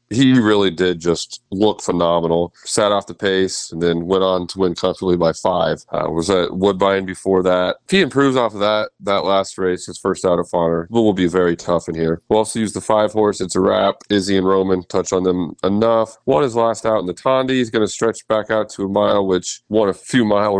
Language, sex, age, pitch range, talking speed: English, male, 30-49, 90-110 Hz, 240 wpm